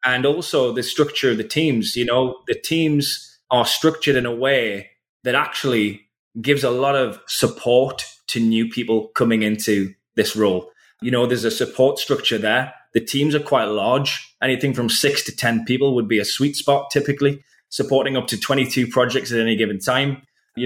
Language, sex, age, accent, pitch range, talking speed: English, male, 20-39, British, 115-140 Hz, 185 wpm